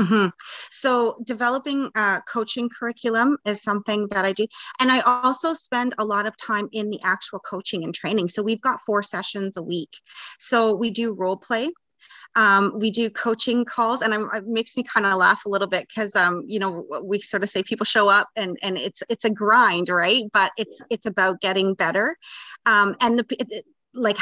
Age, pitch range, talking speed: 30-49, 180-220 Hz, 205 wpm